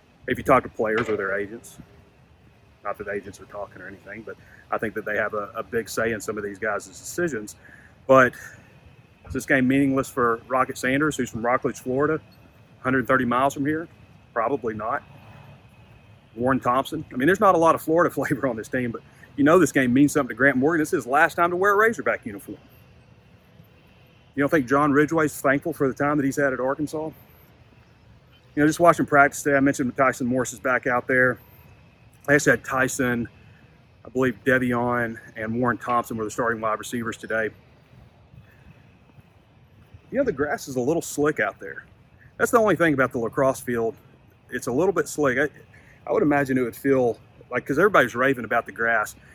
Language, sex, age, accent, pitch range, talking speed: English, male, 40-59, American, 115-145 Hz, 200 wpm